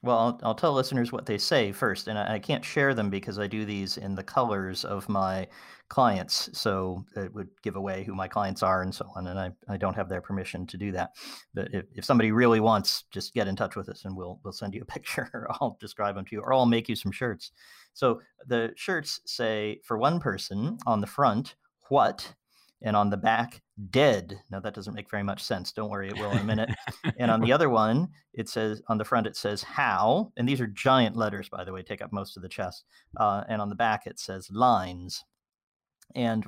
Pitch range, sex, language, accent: 95-115 Hz, male, English, American